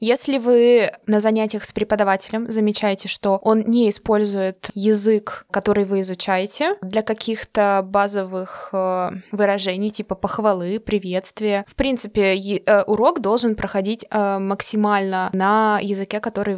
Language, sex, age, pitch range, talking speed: Russian, female, 20-39, 195-220 Hz, 110 wpm